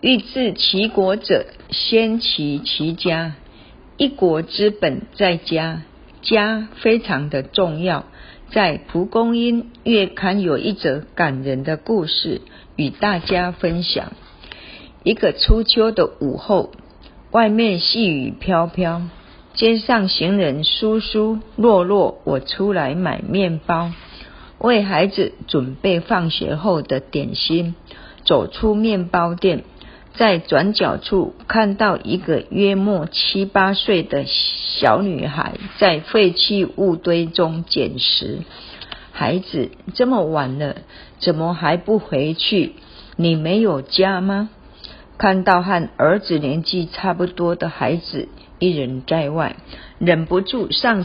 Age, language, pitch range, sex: 50-69, Chinese, 165-205 Hz, female